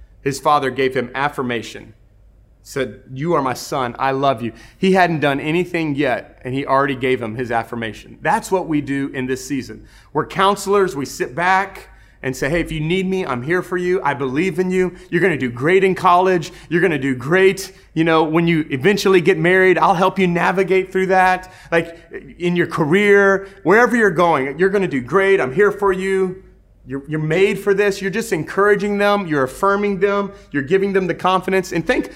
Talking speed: 210 wpm